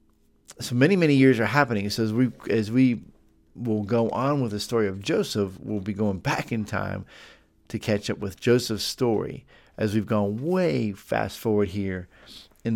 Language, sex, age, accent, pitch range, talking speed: English, male, 50-69, American, 95-115 Hz, 185 wpm